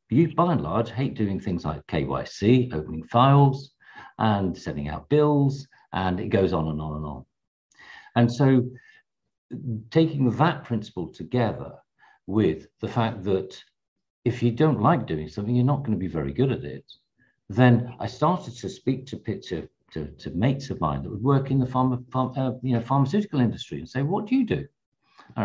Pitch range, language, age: 100-130 Hz, English, 50-69